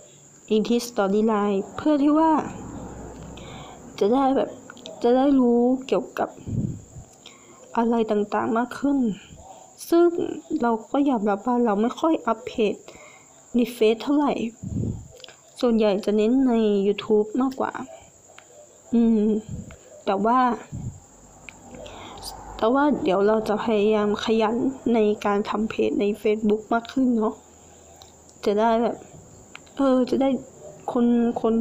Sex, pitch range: female, 205-250 Hz